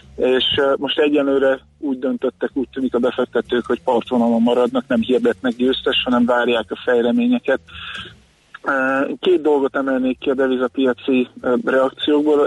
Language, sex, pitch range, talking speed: Hungarian, male, 120-140 Hz, 125 wpm